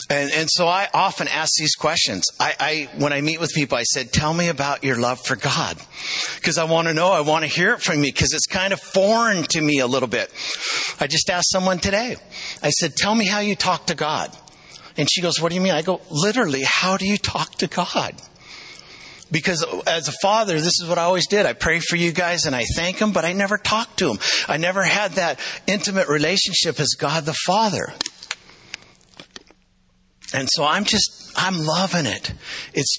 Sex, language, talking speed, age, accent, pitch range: male, English, 215 wpm, 50-69, American, 145-185 Hz